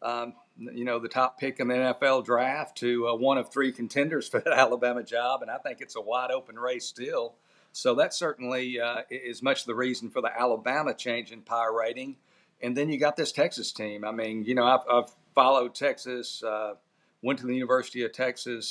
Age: 50-69